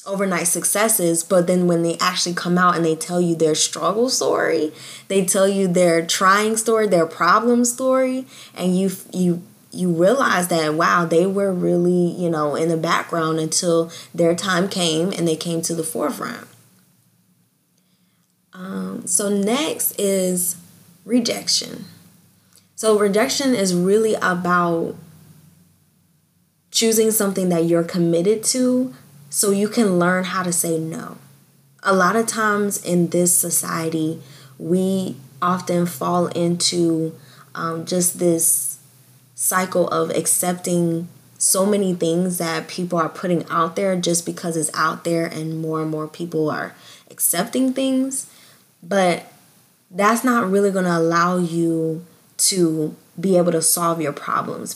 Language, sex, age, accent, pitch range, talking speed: English, female, 10-29, American, 165-190 Hz, 140 wpm